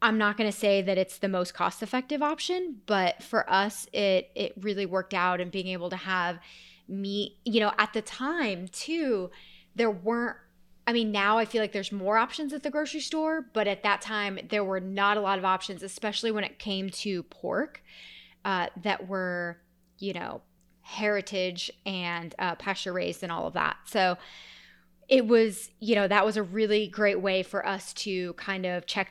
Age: 20-39